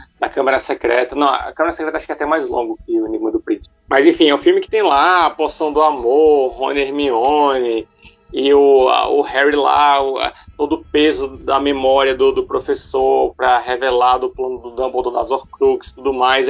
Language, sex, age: Portuguese, male, 30-49